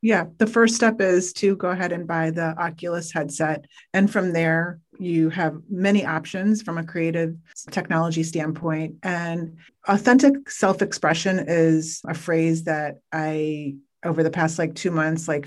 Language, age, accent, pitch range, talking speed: English, 30-49, American, 145-165 Hz, 155 wpm